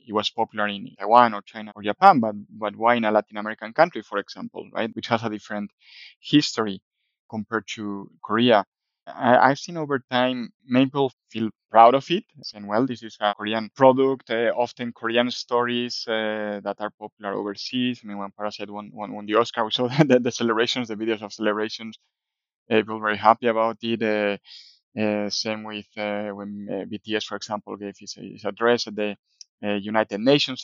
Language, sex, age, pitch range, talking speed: English, male, 20-39, 105-120 Hz, 190 wpm